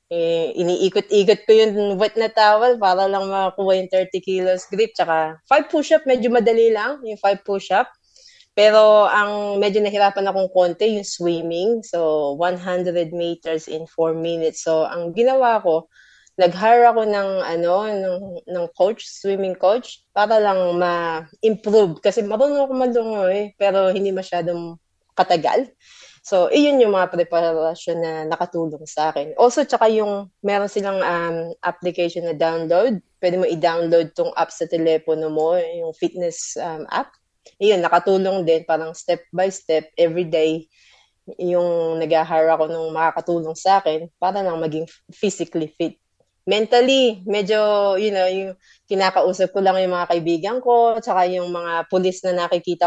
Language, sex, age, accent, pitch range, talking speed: Filipino, female, 20-39, native, 170-210 Hz, 150 wpm